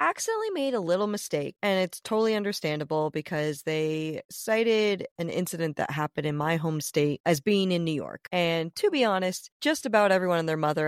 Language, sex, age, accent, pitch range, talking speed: English, female, 30-49, American, 155-205 Hz, 195 wpm